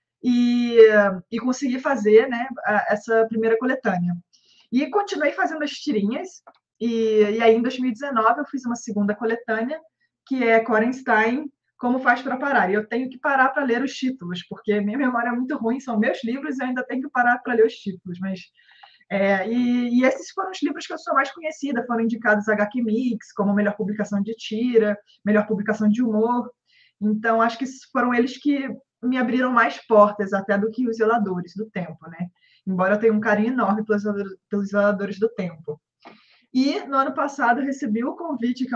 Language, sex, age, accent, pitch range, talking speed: Portuguese, female, 20-39, Brazilian, 210-250 Hz, 185 wpm